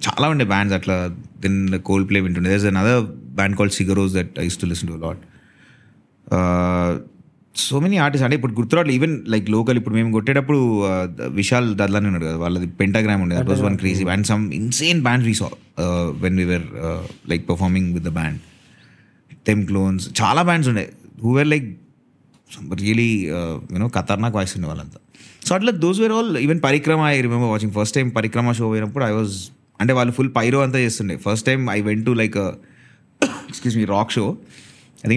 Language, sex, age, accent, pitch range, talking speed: Telugu, male, 30-49, native, 95-135 Hz, 175 wpm